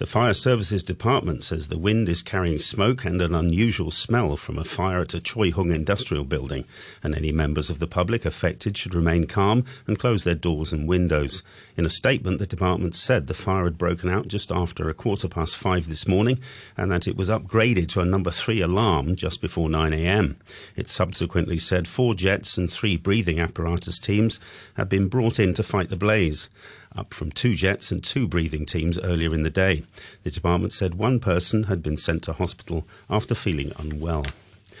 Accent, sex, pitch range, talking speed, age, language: British, male, 85-105 Hz, 200 wpm, 40-59, English